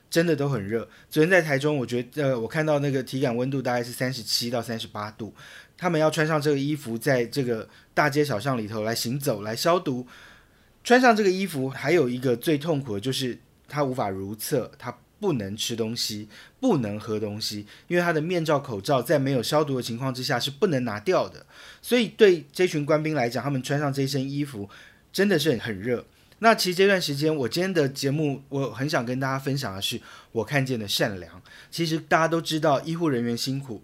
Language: Chinese